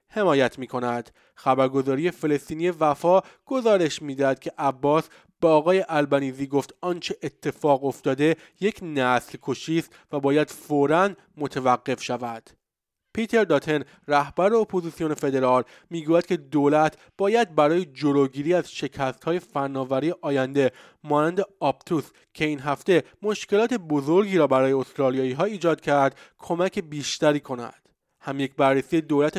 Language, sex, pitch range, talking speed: Persian, male, 140-170 Hz, 125 wpm